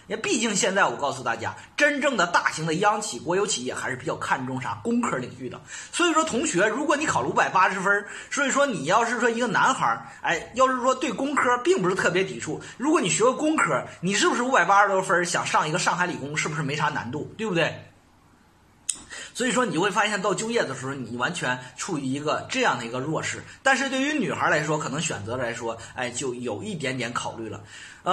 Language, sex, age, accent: Chinese, male, 30-49, native